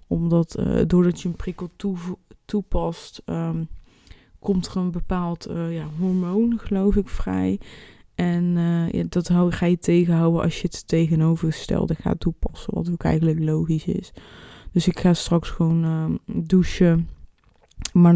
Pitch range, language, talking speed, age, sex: 170-200 Hz, Dutch, 150 wpm, 20-39, female